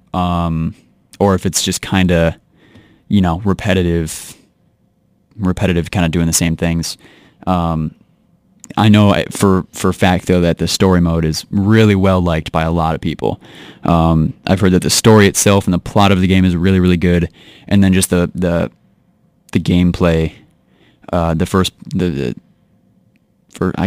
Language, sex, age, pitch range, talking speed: English, male, 20-39, 85-100 Hz, 165 wpm